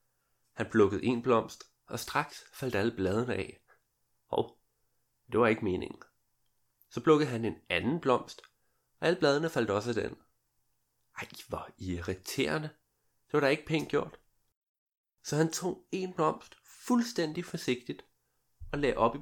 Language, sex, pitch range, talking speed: Danish, male, 105-140 Hz, 150 wpm